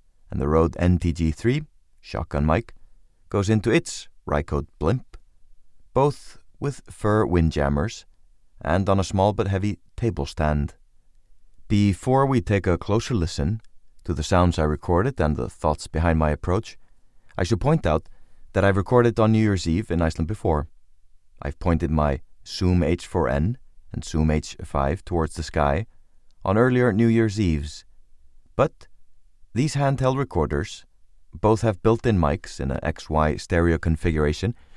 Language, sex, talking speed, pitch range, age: English, male, 145 wpm, 80-110 Hz, 30-49